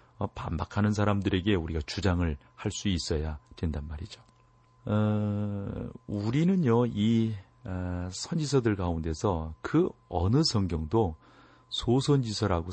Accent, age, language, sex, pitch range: native, 40-59, Korean, male, 90-120 Hz